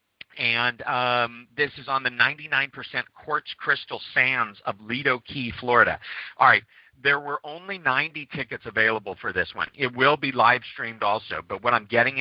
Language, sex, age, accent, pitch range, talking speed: English, male, 50-69, American, 110-130 Hz, 165 wpm